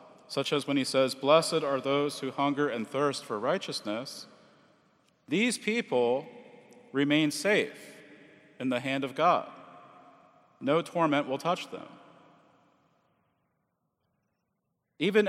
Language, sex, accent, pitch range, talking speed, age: English, male, American, 140-185 Hz, 115 wpm, 40-59